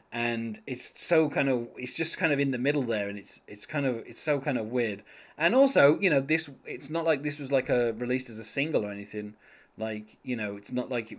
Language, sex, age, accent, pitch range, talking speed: English, male, 20-39, British, 115-150 Hz, 255 wpm